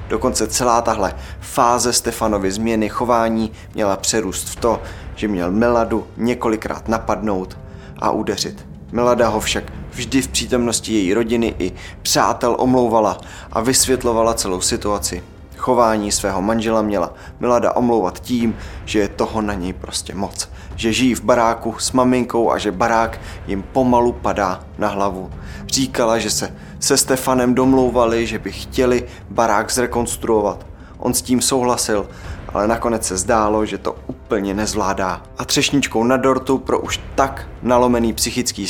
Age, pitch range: 20-39, 95-120 Hz